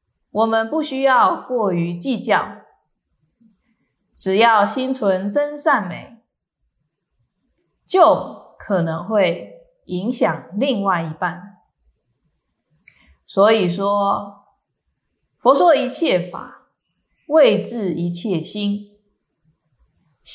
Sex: female